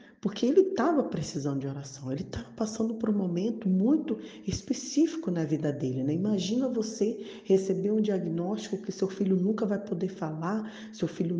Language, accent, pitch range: Portuguese, Brazilian, 140-190 Hz